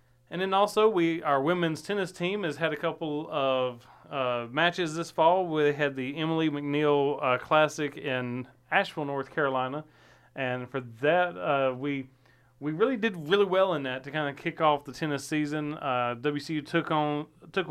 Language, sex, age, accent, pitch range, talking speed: English, male, 40-59, American, 135-160 Hz, 180 wpm